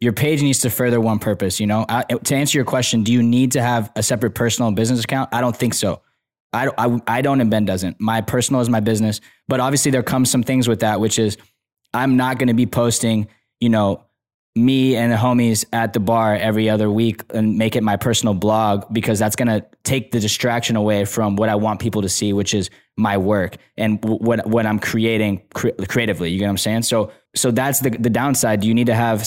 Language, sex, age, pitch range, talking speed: English, male, 10-29, 110-125 Hz, 230 wpm